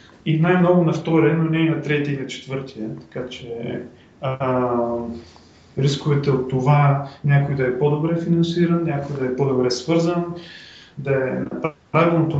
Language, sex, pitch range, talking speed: Bulgarian, male, 130-170 Hz, 145 wpm